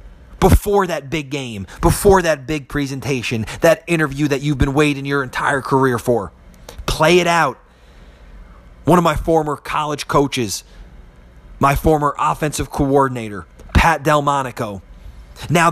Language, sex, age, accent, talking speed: English, male, 30-49, American, 130 wpm